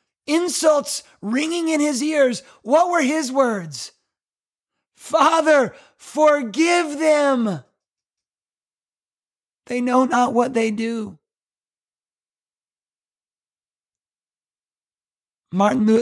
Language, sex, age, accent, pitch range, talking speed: English, male, 30-49, American, 215-285 Hz, 70 wpm